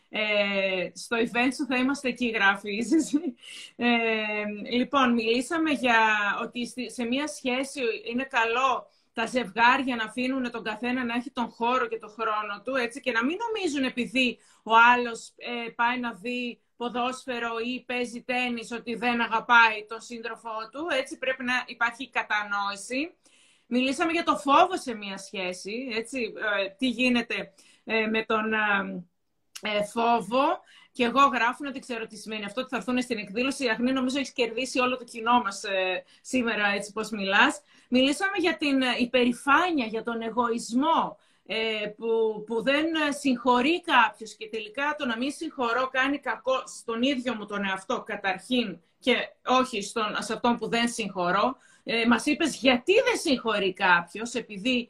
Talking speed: 160 wpm